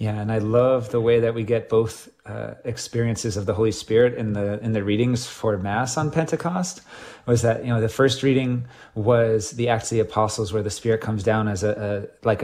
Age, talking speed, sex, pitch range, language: 30-49, 225 wpm, male, 110-125 Hz, English